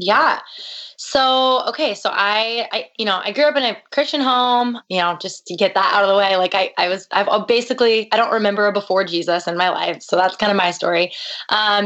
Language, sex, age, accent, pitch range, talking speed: English, female, 20-39, American, 190-240 Hz, 240 wpm